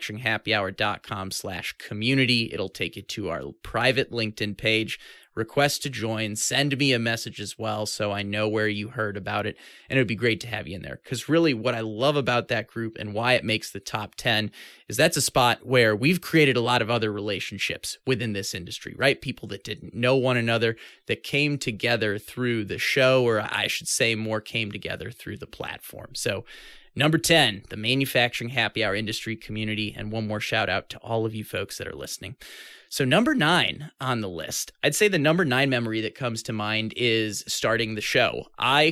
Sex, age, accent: male, 20-39, American